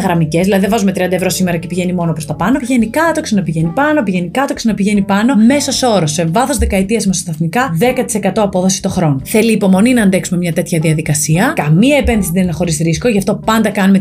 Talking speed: 205 wpm